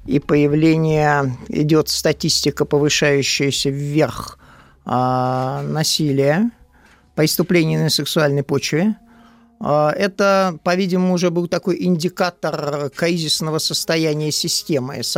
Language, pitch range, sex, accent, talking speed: Russian, 145-185 Hz, male, native, 90 wpm